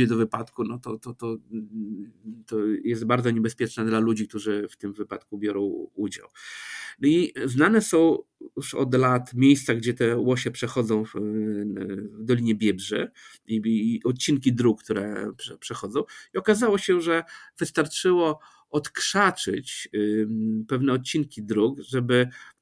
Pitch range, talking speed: 110-145 Hz, 135 wpm